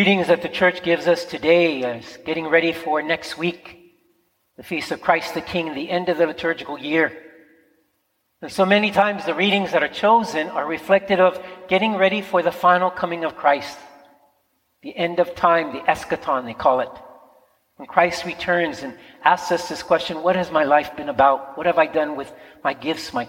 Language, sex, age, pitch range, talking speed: English, male, 50-69, 155-180 Hz, 195 wpm